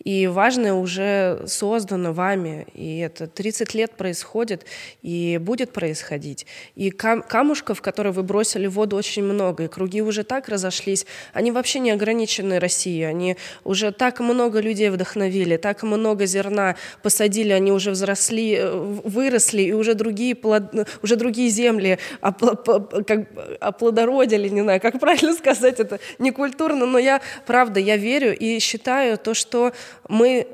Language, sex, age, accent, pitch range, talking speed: Russian, female, 20-39, native, 195-230 Hz, 150 wpm